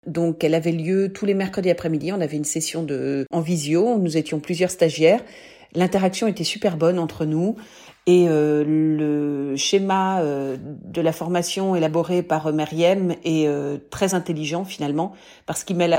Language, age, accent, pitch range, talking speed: French, 40-59, French, 155-185 Hz, 170 wpm